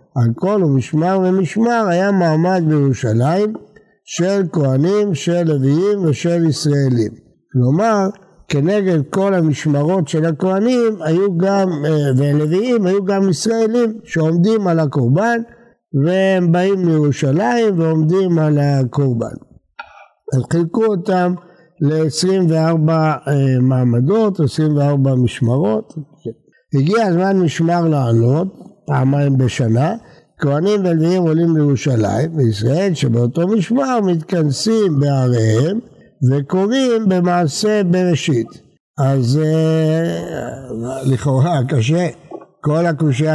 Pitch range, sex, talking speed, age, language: 140-190 Hz, male, 90 wpm, 60-79, Hebrew